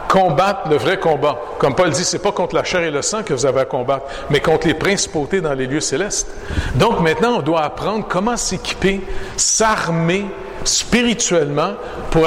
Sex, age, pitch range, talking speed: male, 60-79, 145-210 Hz, 185 wpm